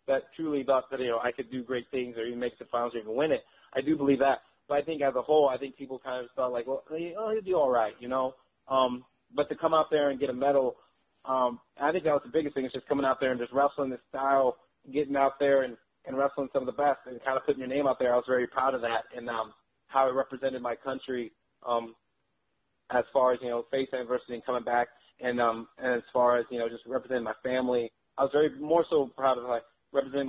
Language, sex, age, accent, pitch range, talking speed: English, male, 30-49, American, 120-140 Hz, 270 wpm